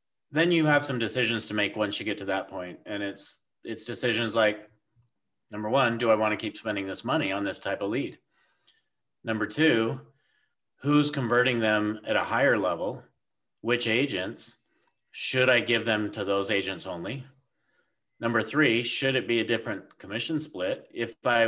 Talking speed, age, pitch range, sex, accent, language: 175 wpm, 40-59, 110-135 Hz, male, American, English